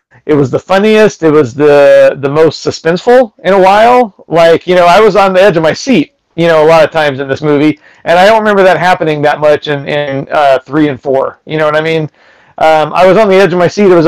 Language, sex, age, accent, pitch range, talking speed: English, male, 40-59, American, 150-185 Hz, 270 wpm